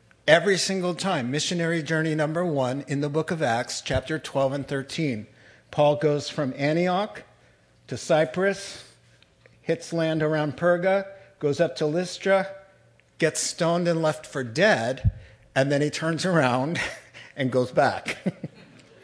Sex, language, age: male, English, 50-69